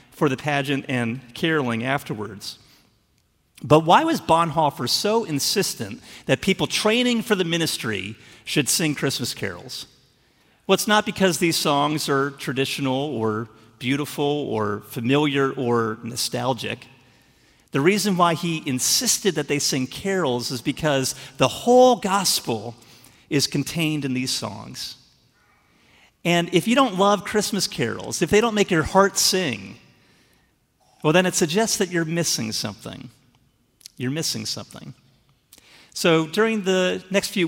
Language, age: English, 40-59